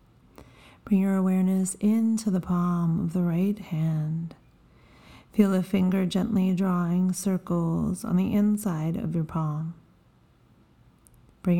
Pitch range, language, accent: 160-185 Hz, English, American